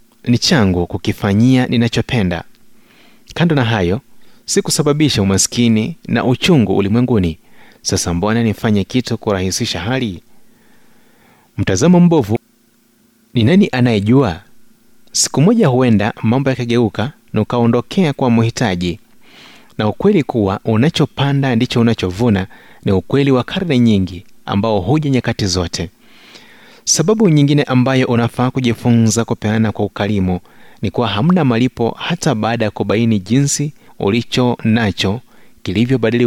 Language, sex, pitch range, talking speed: Swahili, male, 105-135 Hz, 115 wpm